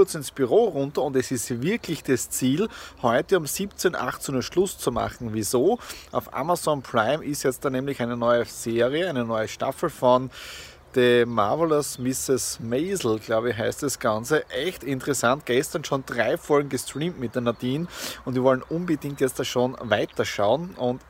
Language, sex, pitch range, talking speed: German, male, 125-155 Hz, 170 wpm